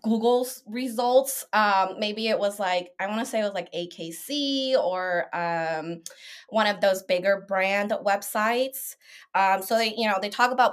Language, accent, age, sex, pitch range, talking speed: English, American, 20-39, female, 175-220 Hz, 175 wpm